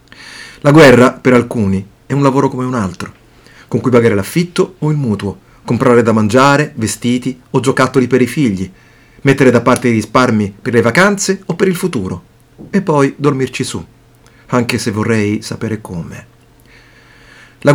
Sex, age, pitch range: male, 40-59, 120-145 Hz